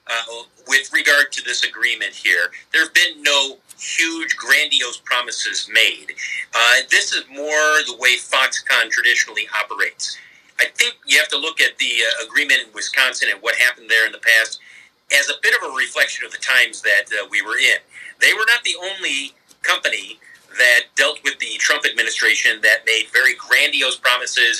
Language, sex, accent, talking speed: English, male, American, 180 wpm